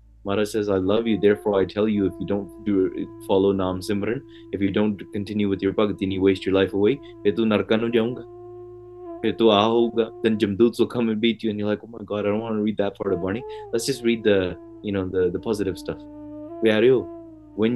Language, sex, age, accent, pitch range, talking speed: English, male, 20-39, Indian, 105-150 Hz, 200 wpm